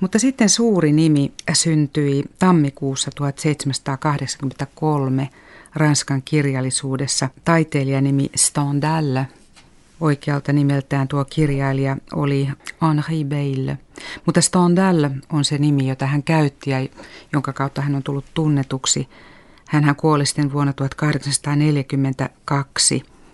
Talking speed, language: 100 wpm, Finnish